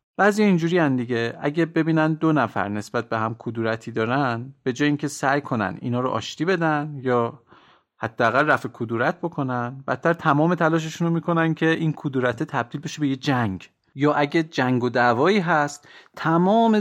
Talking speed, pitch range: 170 wpm, 115-160 Hz